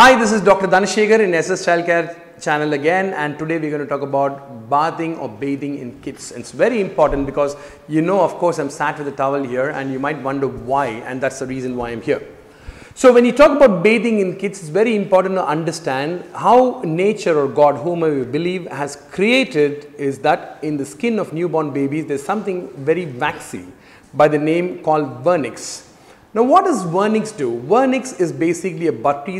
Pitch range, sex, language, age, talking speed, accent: 145-190 Hz, male, Tamil, 40-59, 200 wpm, native